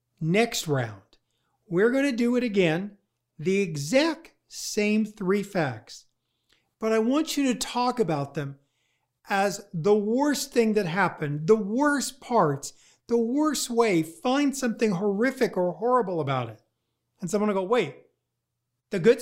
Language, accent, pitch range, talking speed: English, American, 125-210 Hz, 145 wpm